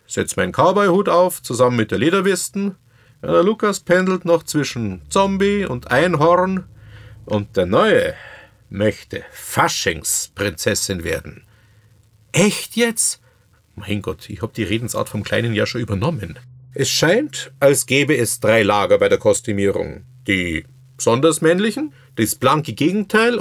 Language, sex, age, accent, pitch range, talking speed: German, male, 50-69, German, 110-180 Hz, 135 wpm